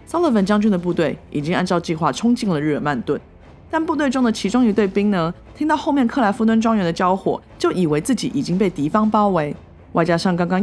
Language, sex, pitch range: Chinese, female, 150-215 Hz